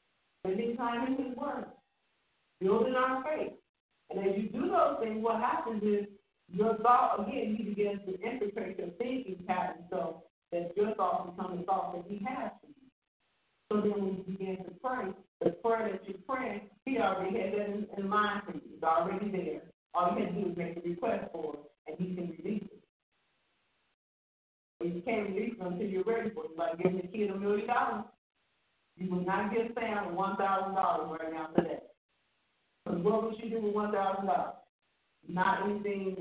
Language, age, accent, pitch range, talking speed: English, 50-69, American, 185-230 Hz, 185 wpm